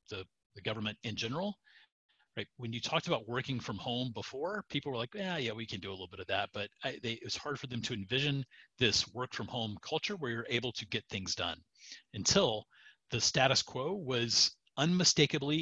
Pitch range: 110-145 Hz